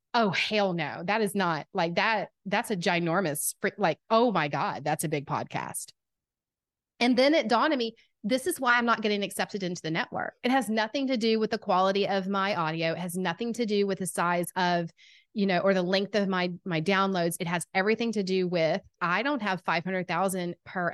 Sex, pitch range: female, 180-225 Hz